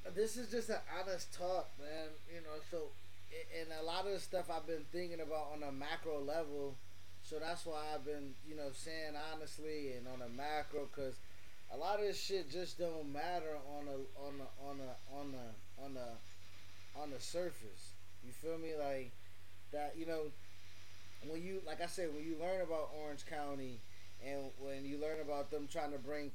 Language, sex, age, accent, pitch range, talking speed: English, male, 20-39, American, 130-175 Hz, 200 wpm